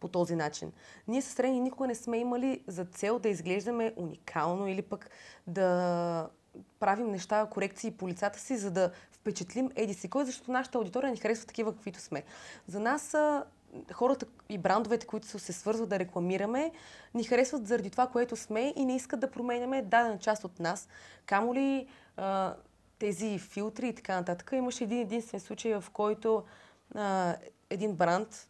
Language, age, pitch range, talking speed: Bulgarian, 20-39, 190-245 Hz, 165 wpm